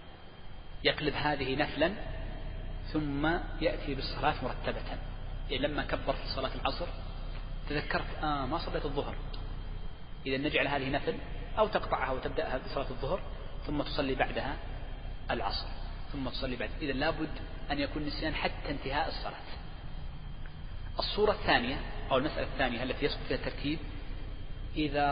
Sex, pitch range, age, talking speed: male, 130-150 Hz, 40-59, 125 wpm